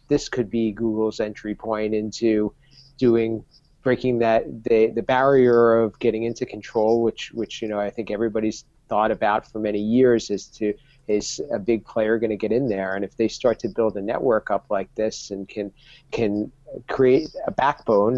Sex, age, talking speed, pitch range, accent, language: male, 40-59, 190 wpm, 105-120 Hz, American, English